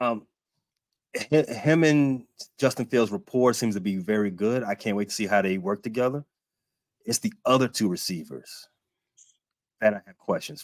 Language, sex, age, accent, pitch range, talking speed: English, male, 30-49, American, 100-120 Hz, 165 wpm